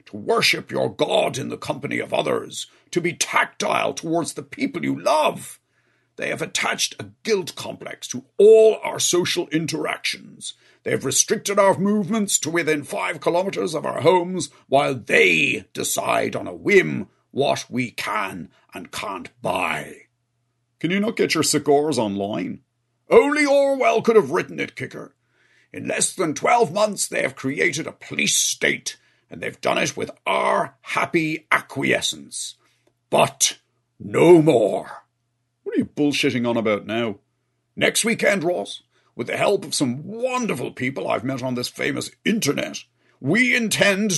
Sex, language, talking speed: male, English, 150 wpm